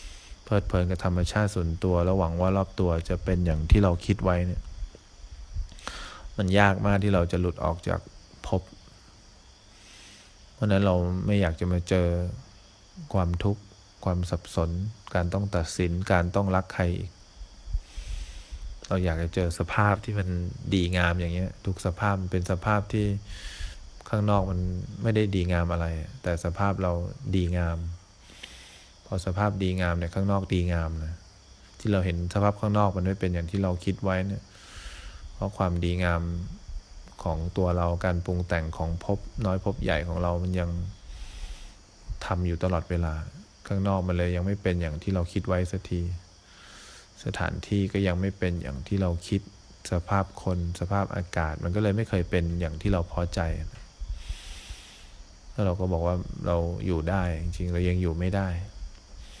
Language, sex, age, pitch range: English, male, 20-39, 85-95 Hz